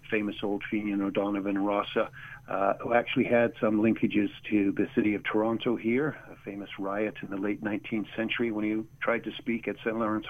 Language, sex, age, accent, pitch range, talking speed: English, male, 50-69, American, 105-130 Hz, 190 wpm